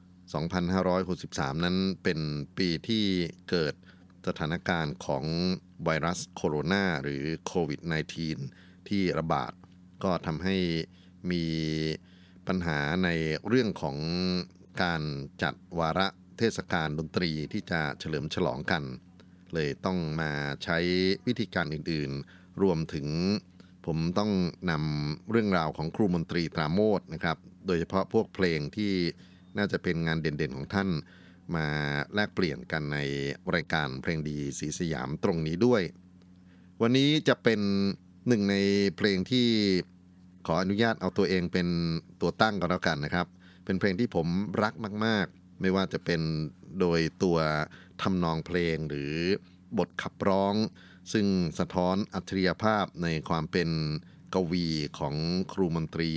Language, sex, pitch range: Thai, male, 80-95 Hz